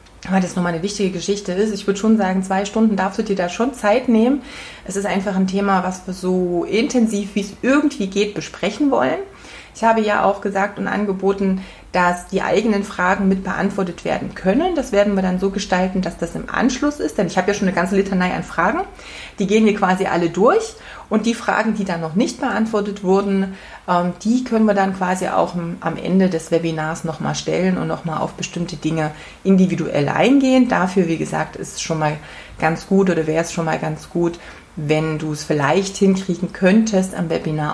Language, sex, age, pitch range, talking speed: German, female, 30-49, 180-210 Hz, 205 wpm